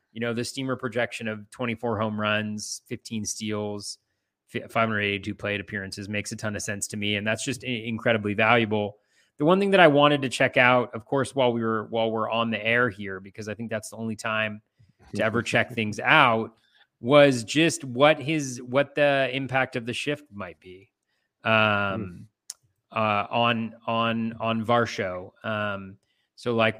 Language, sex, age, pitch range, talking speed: English, male, 30-49, 105-125 Hz, 175 wpm